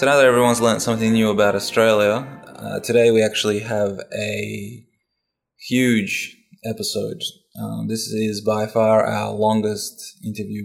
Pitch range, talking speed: 105-120 Hz, 140 wpm